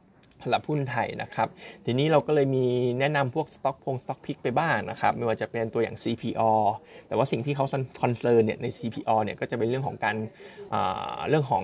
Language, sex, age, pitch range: Thai, male, 20-39, 115-140 Hz